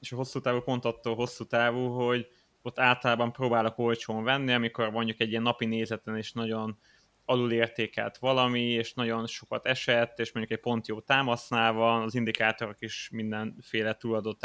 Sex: male